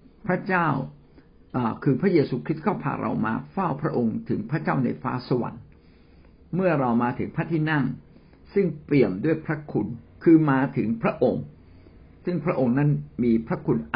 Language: Thai